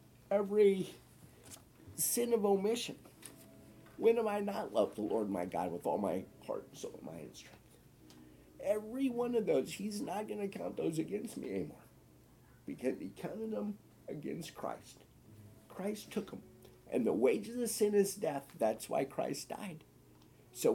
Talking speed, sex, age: 160 wpm, male, 50-69